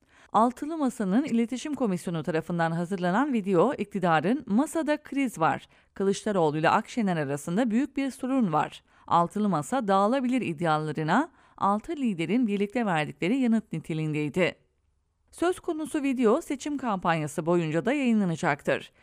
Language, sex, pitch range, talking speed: English, female, 170-260 Hz, 115 wpm